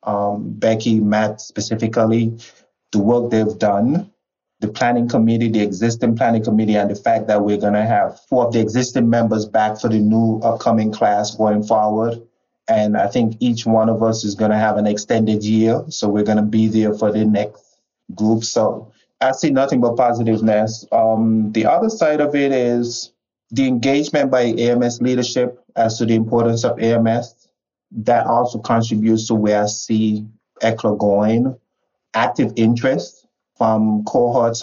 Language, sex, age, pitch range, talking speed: English, male, 20-39, 105-115 Hz, 170 wpm